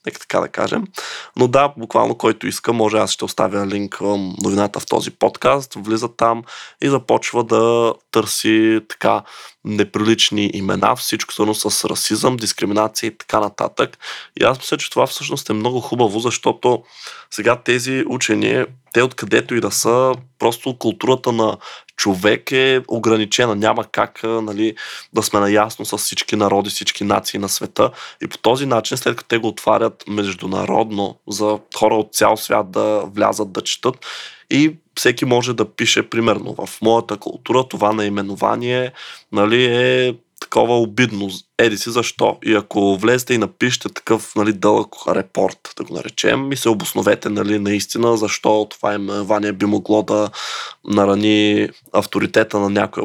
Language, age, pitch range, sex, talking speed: Bulgarian, 20-39, 105-120 Hz, male, 150 wpm